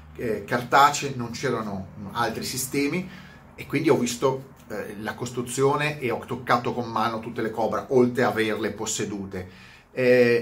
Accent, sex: native, male